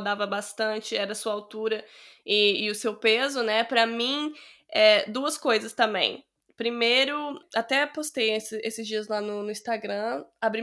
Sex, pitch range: female, 215-270 Hz